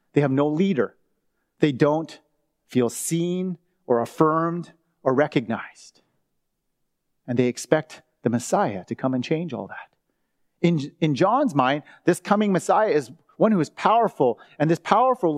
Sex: male